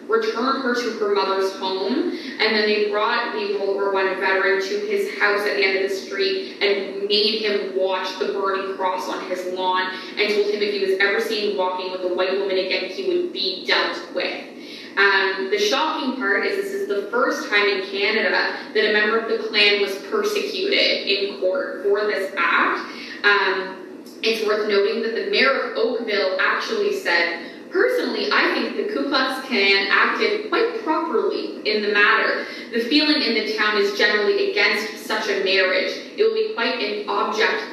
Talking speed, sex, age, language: 185 wpm, female, 20-39, English